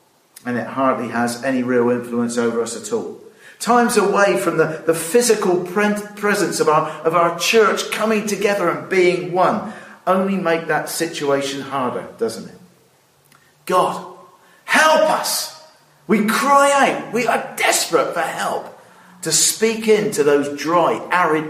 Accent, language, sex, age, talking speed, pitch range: British, English, male, 50-69, 145 wpm, 150-215 Hz